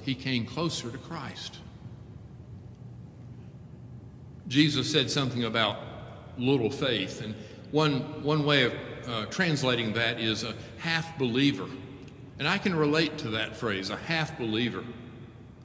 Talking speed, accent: 120 wpm, American